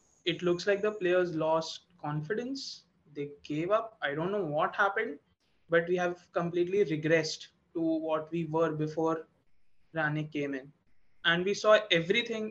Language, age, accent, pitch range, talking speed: English, 20-39, Indian, 155-180 Hz, 155 wpm